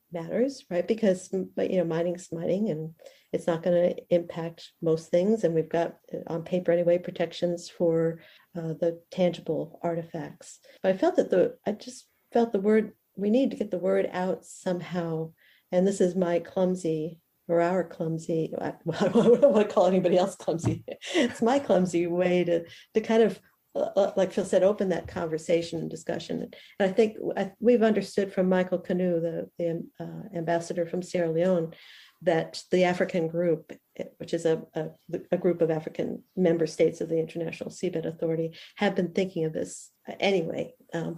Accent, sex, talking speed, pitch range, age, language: American, female, 175 wpm, 170-195 Hz, 50-69, English